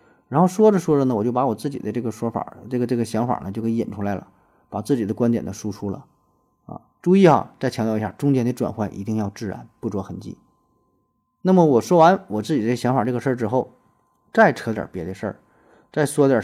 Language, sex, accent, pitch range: Chinese, male, native, 110-140 Hz